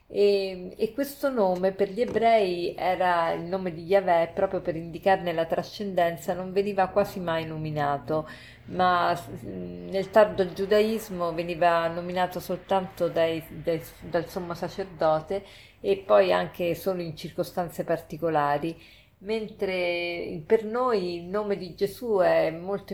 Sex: female